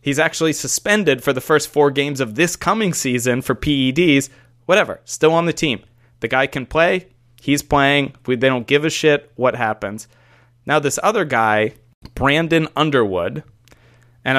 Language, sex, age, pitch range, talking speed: English, male, 20-39, 120-155 Hz, 165 wpm